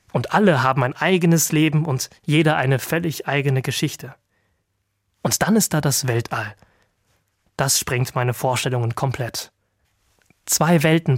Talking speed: 135 wpm